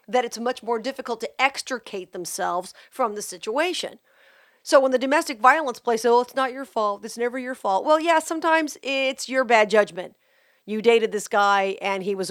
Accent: American